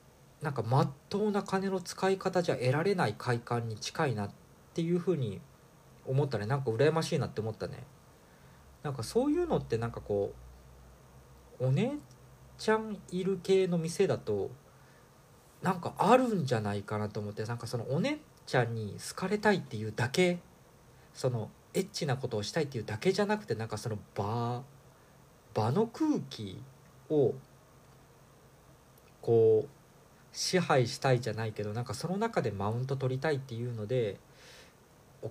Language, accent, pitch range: Japanese, native, 115-170 Hz